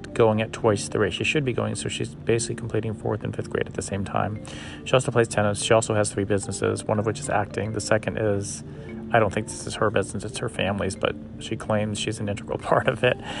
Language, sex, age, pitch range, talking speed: English, male, 40-59, 105-120 Hz, 255 wpm